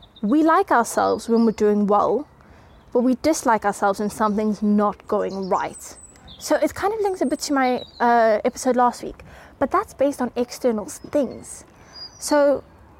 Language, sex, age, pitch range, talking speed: English, female, 20-39, 215-285 Hz, 165 wpm